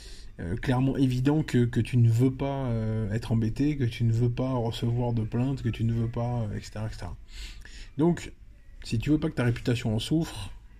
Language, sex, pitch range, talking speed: French, male, 105-125 Hz, 215 wpm